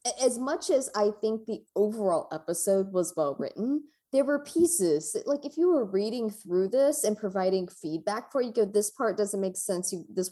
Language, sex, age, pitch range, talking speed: English, female, 20-39, 175-265 Hz, 200 wpm